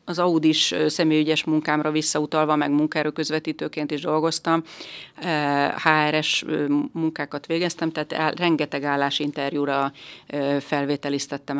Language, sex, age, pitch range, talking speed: Hungarian, female, 30-49, 145-155 Hz, 90 wpm